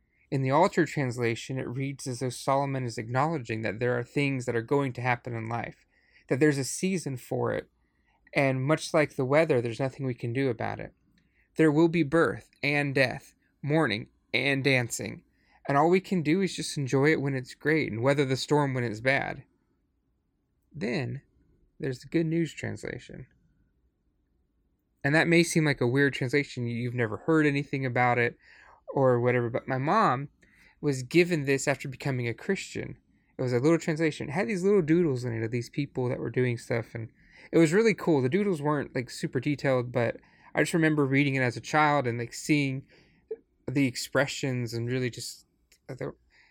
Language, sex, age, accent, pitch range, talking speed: English, male, 30-49, American, 120-150 Hz, 190 wpm